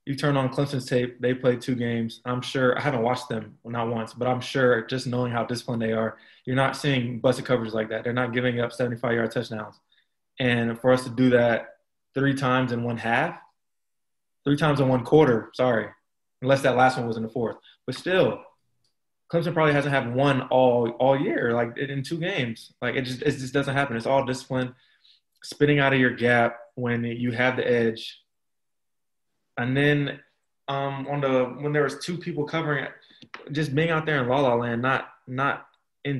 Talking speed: 200 wpm